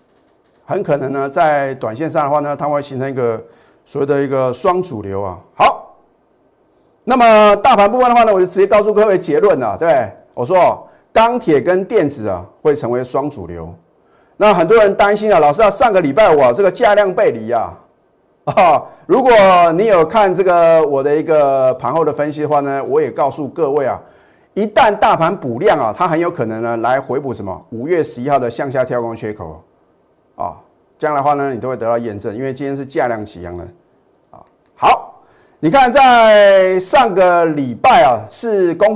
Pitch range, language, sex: 130-195 Hz, Chinese, male